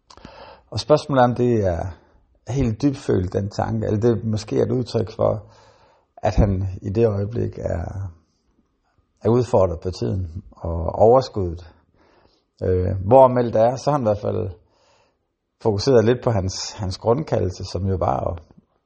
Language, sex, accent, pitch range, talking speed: Danish, male, native, 95-115 Hz, 155 wpm